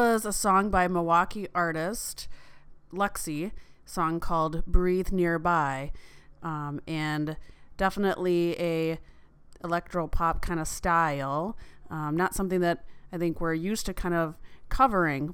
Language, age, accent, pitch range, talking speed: English, 30-49, American, 155-180 Hz, 125 wpm